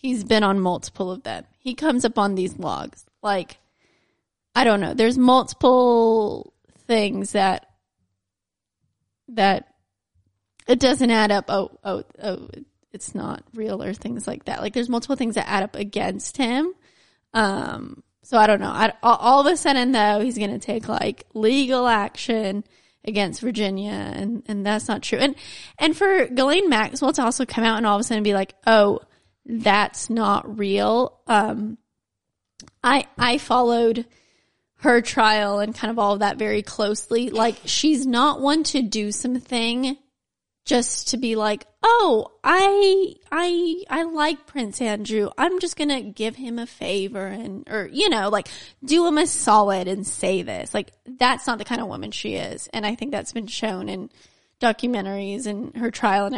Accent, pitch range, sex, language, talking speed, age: American, 205-255 Hz, female, English, 170 wpm, 20-39